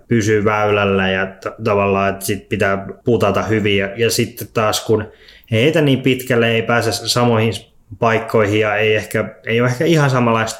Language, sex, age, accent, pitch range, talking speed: Finnish, male, 20-39, native, 100-115 Hz, 165 wpm